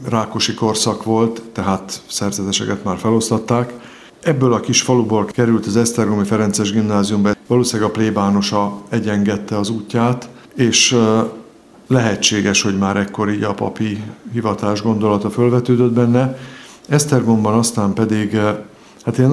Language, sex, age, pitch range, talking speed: Hungarian, male, 50-69, 105-115 Hz, 120 wpm